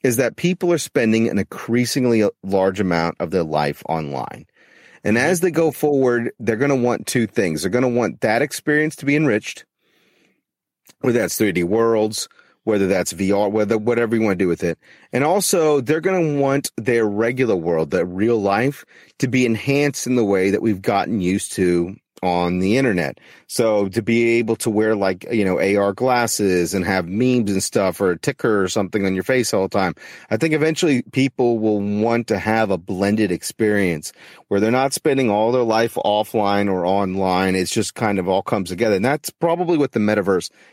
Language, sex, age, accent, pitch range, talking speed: English, male, 30-49, American, 100-125 Hz, 195 wpm